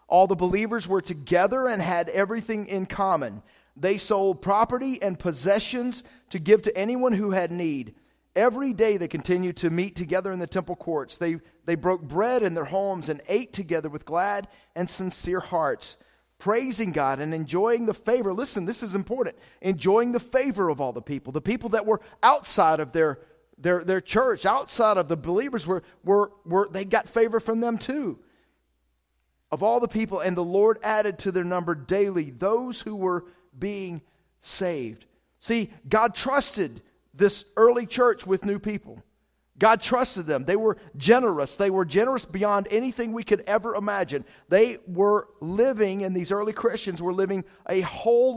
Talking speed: 175 wpm